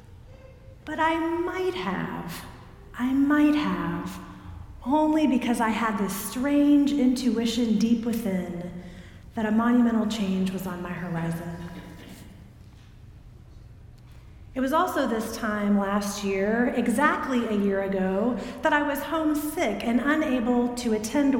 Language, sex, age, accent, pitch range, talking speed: English, female, 40-59, American, 185-265 Hz, 120 wpm